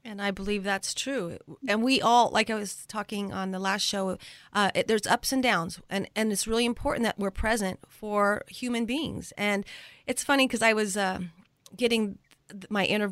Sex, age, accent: female, 30-49, American